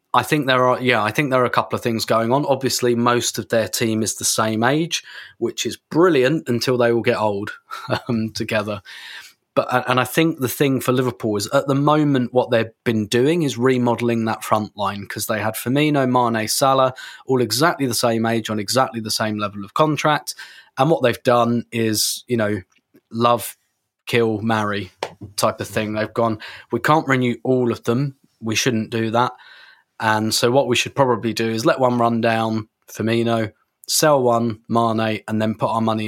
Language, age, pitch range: English, 20-39, 110-130 Hz